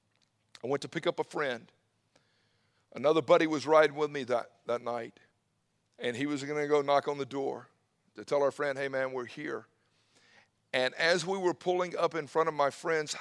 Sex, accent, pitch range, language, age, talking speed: male, American, 135-155 Hz, English, 50-69, 205 wpm